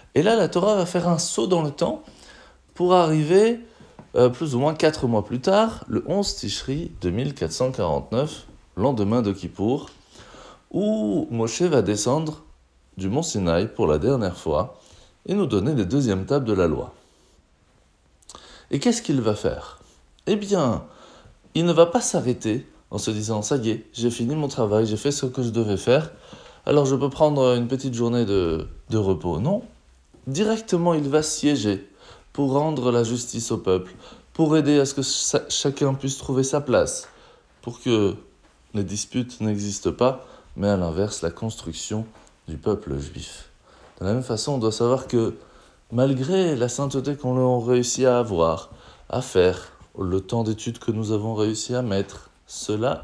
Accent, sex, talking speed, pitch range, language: French, male, 170 wpm, 105-145 Hz, French